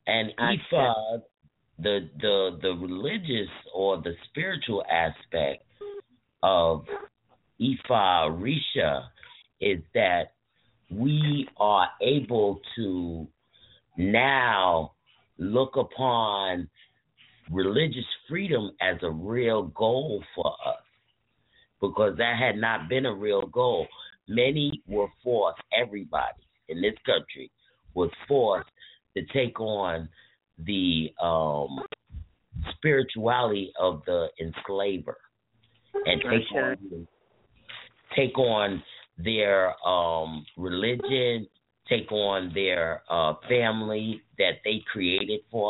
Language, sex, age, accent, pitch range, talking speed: English, male, 50-69, American, 90-130 Hz, 95 wpm